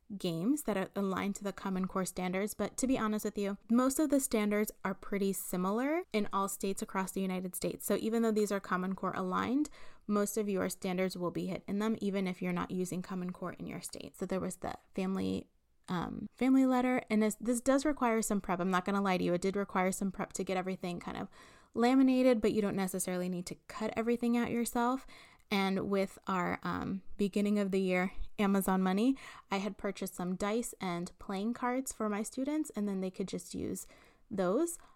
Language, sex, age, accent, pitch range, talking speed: English, female, 20-39, American, 190-235 Hz, 220 wpm